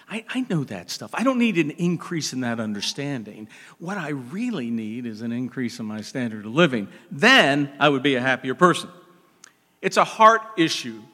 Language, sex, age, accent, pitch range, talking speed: English, male, 50-69, American, 120-175 Hz, 195 wpm